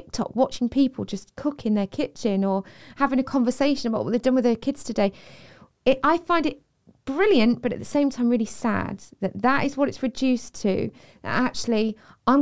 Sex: female